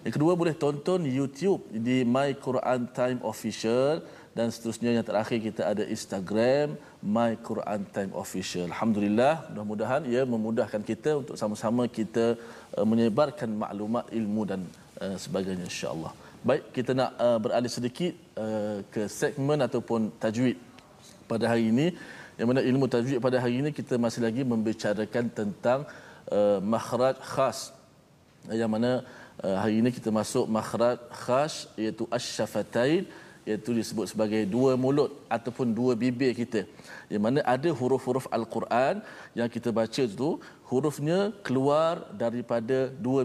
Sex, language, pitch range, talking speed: male, Malayalam, 110-130 Hz, 130 wpm